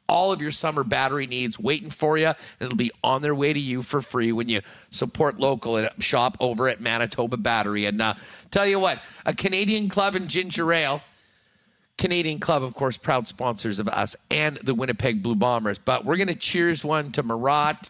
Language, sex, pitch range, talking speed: English, male, 120-155 Hz, 205 wpm